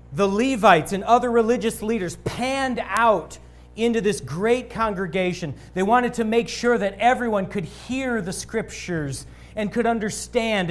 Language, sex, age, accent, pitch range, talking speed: English, male, 40-59, American, 140-215 Hz, 145 wpm